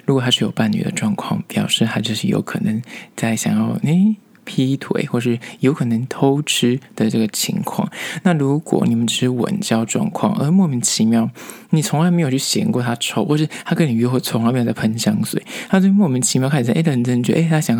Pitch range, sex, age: 115-175 Hz, male, 20-39